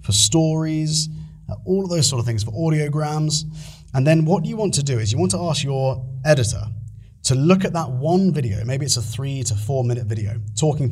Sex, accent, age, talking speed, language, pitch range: male, British, 30-49, 215 wpm, English, 110-150 Hz